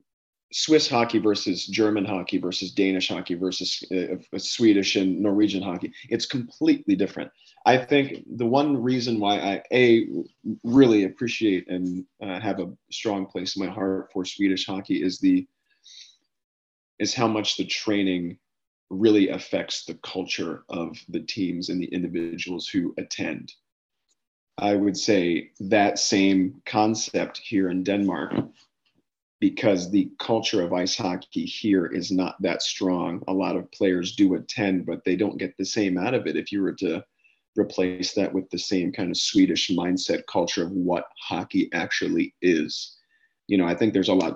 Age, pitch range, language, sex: 40-59, 90-115 Hz, English, male